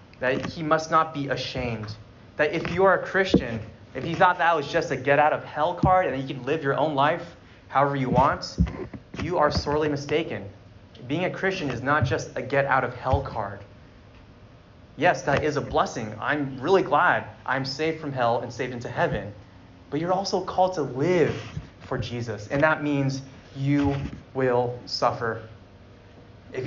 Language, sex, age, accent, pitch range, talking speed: English, male, 20-39, American, 115-150 Hz, 180 wpm